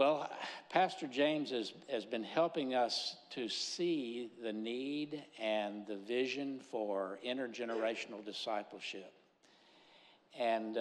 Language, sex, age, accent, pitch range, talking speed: English, male, 60-79, American, 115-160 Hz, 105 wpm